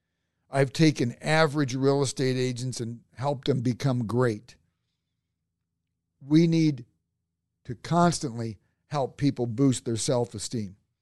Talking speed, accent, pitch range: 110 wpm, American, 120-155 Hz